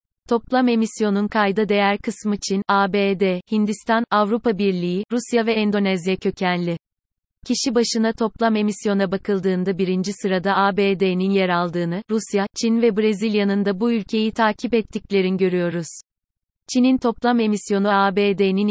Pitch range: 190-220 Hz